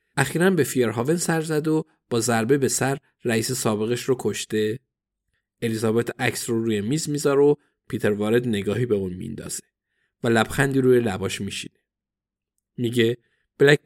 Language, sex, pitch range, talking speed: Persian, male, 115-155 Hz, 145 wpm